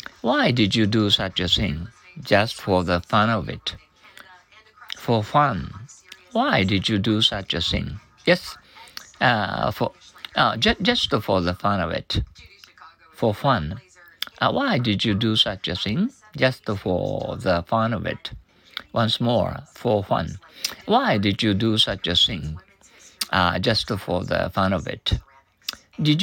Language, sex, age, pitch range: Japanese, male, 50-69, 100-165 Hz